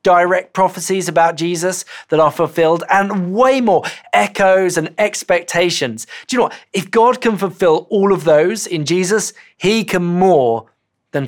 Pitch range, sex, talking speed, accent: 140-190 Hz, male, 160 wpm, British